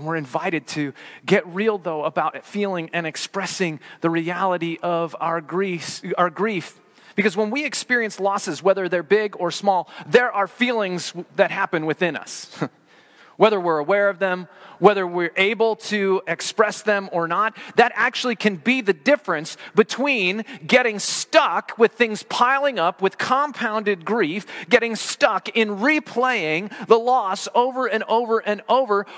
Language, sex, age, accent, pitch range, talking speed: English, male, 30-49, American, 155-220 Hz, 150 wpm